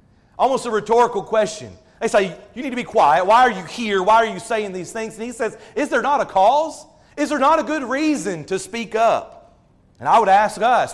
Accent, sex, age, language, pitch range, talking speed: American, male, 40-59, English, 160-220 Hz, 235 wpm